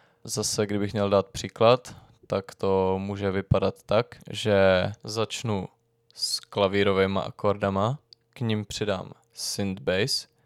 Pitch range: 100-115 Hz